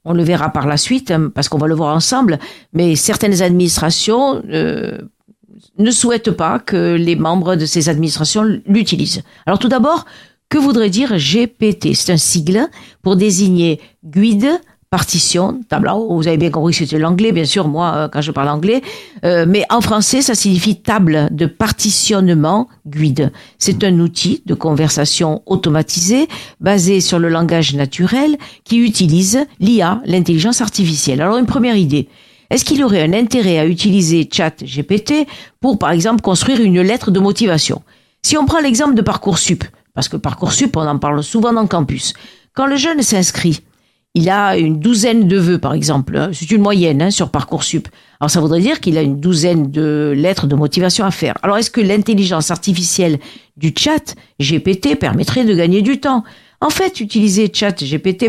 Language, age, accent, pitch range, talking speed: French, 50-69, French, 160-220 Hz, 175 wpm